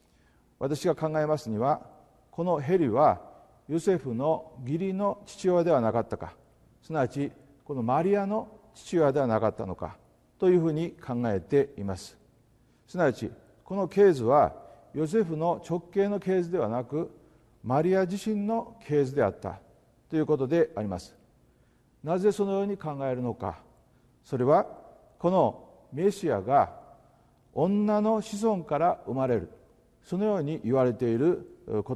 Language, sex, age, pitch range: Japanese, male, 50-69, 115-175 Hz